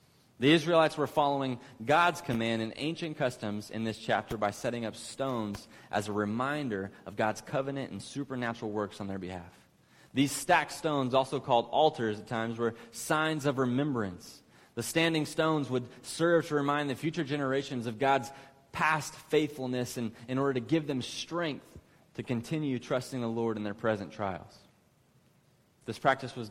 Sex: male